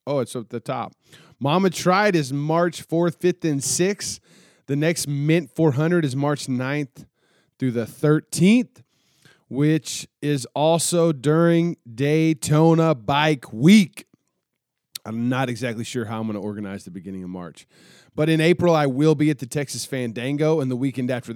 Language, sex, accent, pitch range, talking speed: English, male, American, 115-150 Hz, 155 wpm